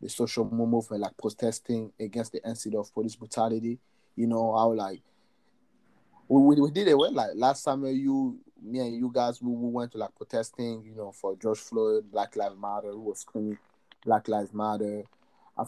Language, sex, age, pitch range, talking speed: English, male, 30-49, 105-120 Hz, 190 wpm